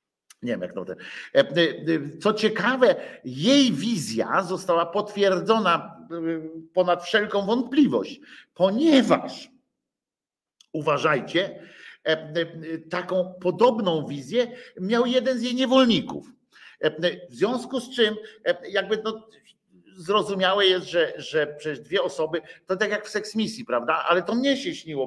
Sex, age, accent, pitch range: male, 50-69, native, 145-240 Hz